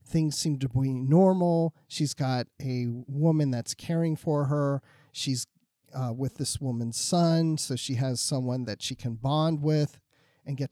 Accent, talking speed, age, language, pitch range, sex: American, 170 wpm, 40-59, English, 125-160 Hz, male